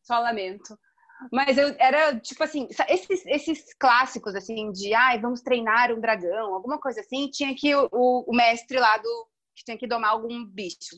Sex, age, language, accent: female, 30-49, Portuguese, Brazilian